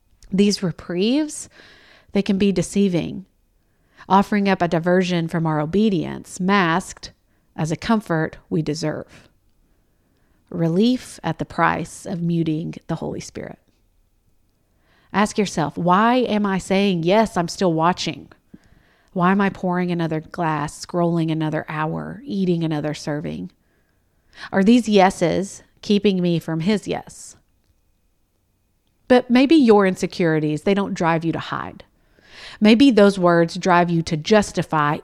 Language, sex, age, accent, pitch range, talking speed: English, female, 40-59, American, 155-205 Hz, 130 wpm